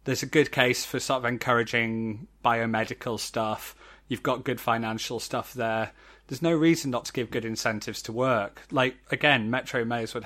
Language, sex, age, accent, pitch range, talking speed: English, male, 30-49, British, 115-145 Hz, 180 wpm